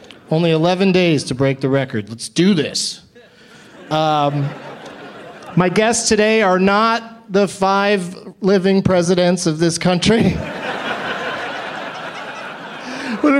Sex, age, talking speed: male, 30-49, 105 wpm